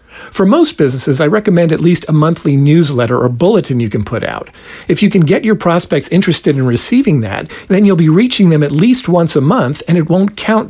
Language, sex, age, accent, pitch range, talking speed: English, male, 50-69, American, 140-190 Hz, 225 wpm